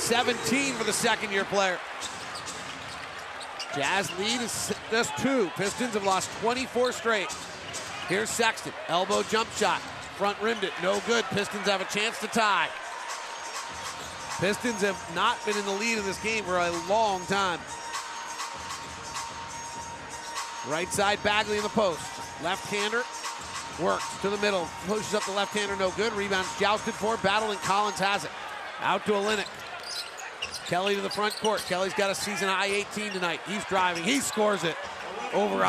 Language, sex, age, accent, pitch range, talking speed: English, male, 40-59, American, 180-215 Hz, 155 wpm